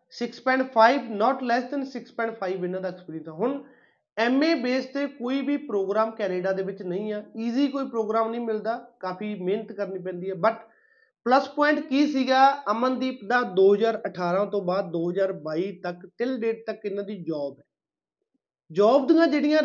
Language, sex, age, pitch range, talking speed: Punjabi, male, 30-49, 200-260 Hz, 160 wpm